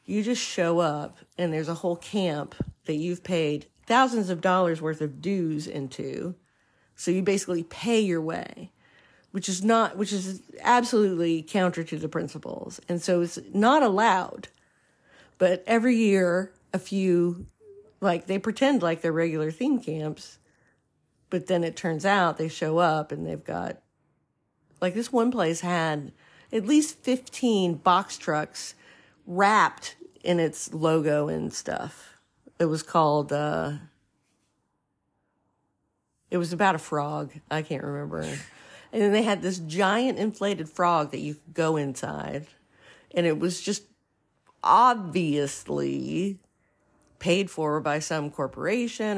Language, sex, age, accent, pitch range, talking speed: English, female, 50-69, American, 155-195 Hz, 140 wpm